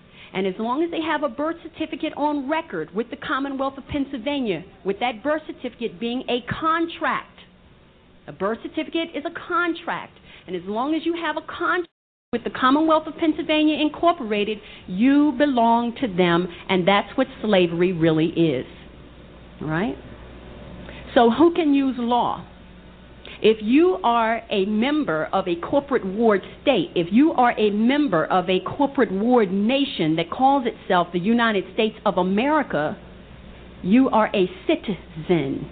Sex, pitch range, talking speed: female, 185-285 Hz, 155 wpm